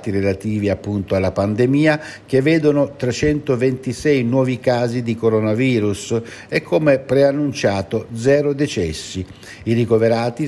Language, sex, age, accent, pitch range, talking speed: Italian, male, 60-79, native, 105-130 Hz, 105 wpm